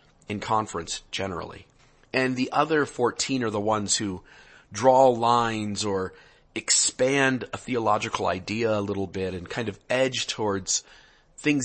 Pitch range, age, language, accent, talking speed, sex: 105-130 Hz, 40-59, English, American, 140 wpm, male